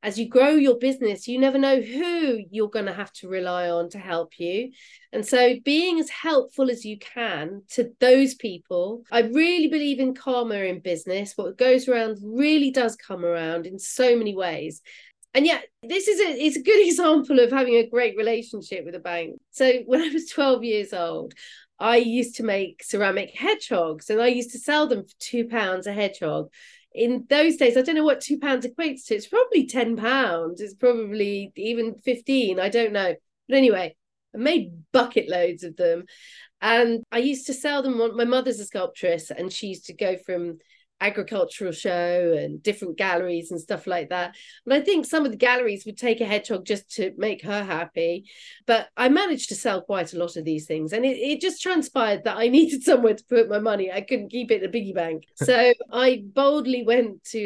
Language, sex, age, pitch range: English, female, 40-59, 200-265 Hz